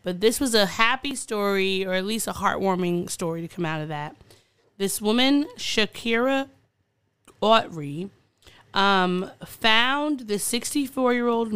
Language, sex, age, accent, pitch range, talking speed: English, female, 20-39, American, 170-220 Hz, 130 wpm